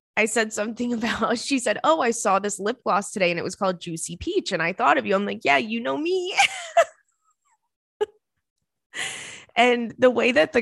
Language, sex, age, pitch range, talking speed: English, female, 20-39, 175-250 Hz, 200 wpm